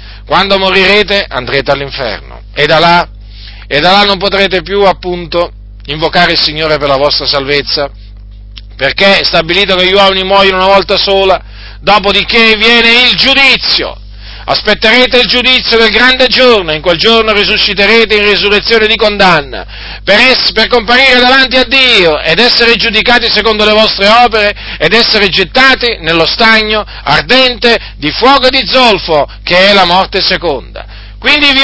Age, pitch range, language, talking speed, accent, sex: 40-59, 165-230 Hz, Italian, 150 wpm, native, male